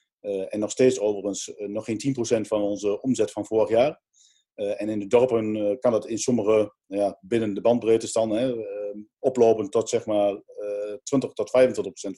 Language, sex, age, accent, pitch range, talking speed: Dutch, male, 40-59, Dutch, 105-125 Hz, 180 wpm